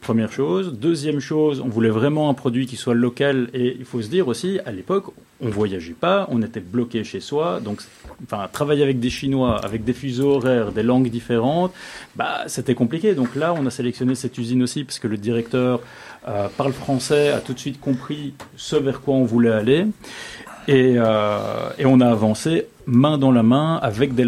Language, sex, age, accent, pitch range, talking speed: French, male, 30-49, French, 115-140 Hz, 205 wpm